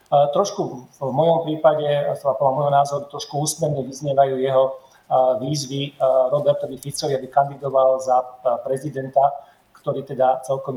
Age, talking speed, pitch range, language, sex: 40-59, 125 wpm, 130-145 Hz, Slovak, male